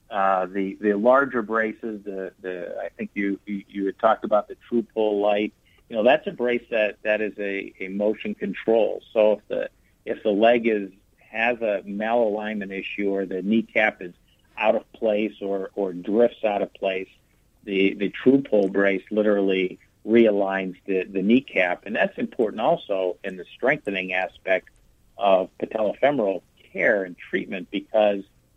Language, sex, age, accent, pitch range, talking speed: English, male, 50-69, American, 95-115 Hz, 165 wpm